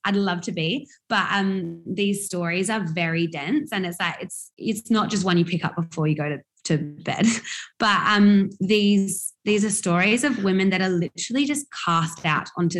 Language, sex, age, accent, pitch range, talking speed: English, female, 20-39, Australian, 165-195 Hz, 200 wpm